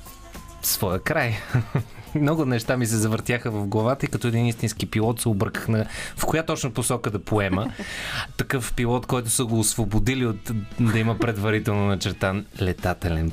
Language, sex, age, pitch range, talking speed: Bulgarian, male, 20-39, 95-125 Hz, 160 wpm